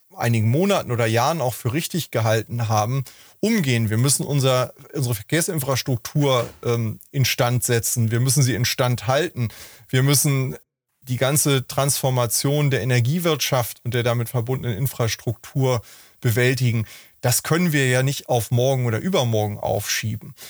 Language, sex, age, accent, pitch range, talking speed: German, male, 30-49, German, 120-140 Hz, 130 wpm